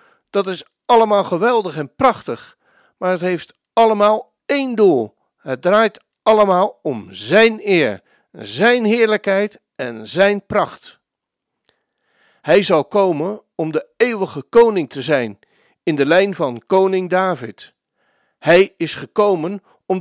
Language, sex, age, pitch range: Dutch, male, 60-79, 160-220 Hz